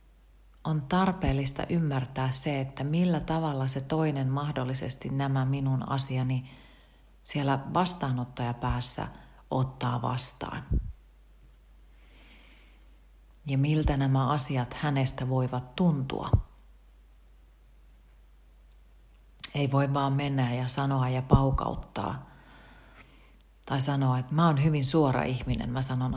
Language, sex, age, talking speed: Finnish, female, 40-59, 100 wpm